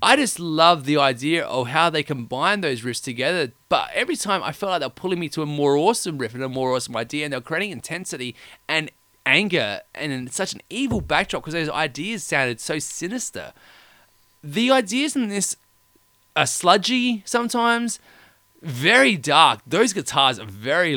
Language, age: English, 20-39